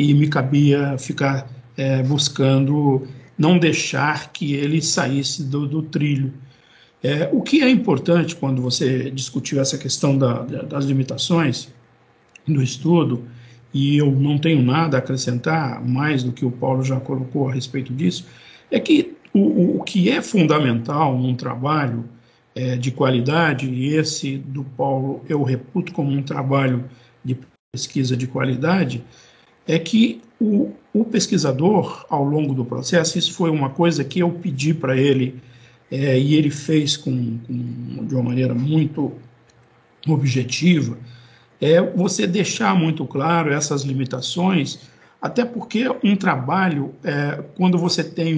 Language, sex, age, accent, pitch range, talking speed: Portuguese, male, 50-69, Brazilian, 130-165 Hz, 135 wpm